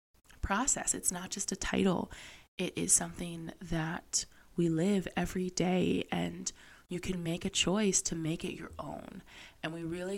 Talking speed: 165 wpm